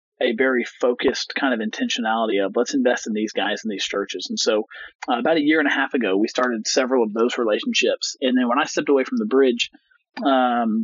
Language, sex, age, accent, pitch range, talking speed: English, male, 40-59, American, 115-155 Hz, 225 wpm